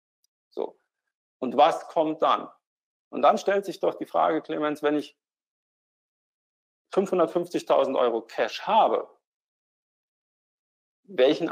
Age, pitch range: 40-59, 135-180 Hz